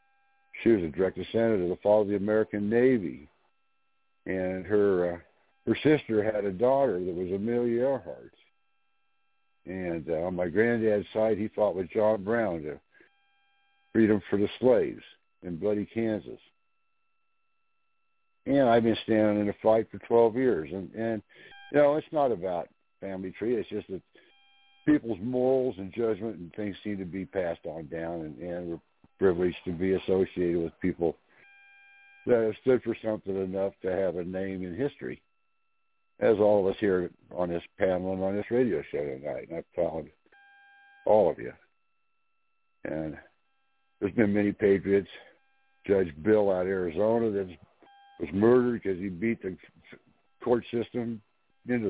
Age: 60-79